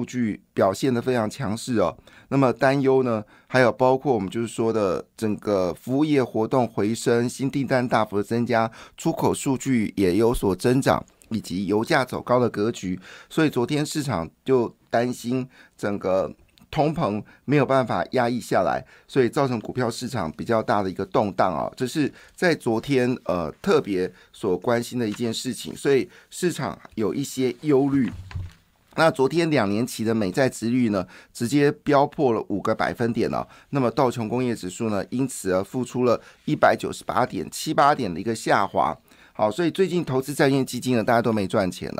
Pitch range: 105-135 Hz